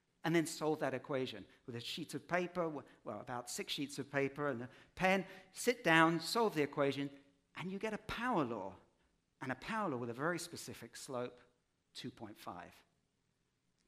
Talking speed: 175 wpm